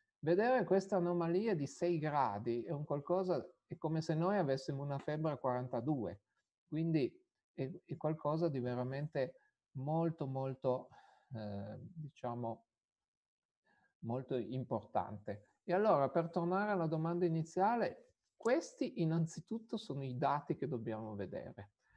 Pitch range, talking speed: 135-180 Hz, 125 wpm